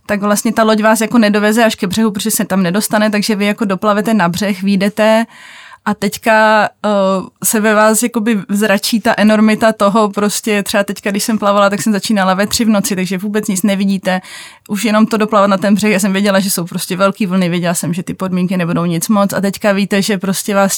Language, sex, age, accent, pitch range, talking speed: Czech, female, 20-39, native, 195-220 Hz, 220 wpm